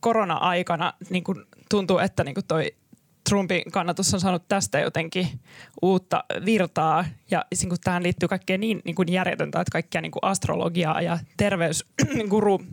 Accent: native